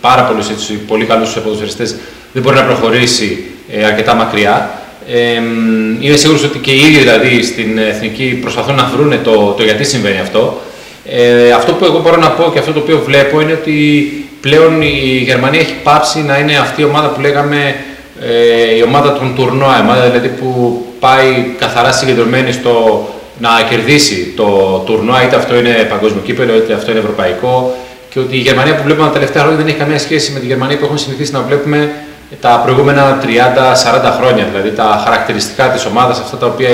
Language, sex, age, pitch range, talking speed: Greek, male, 30-49, 120-145 Hz, 185 wpm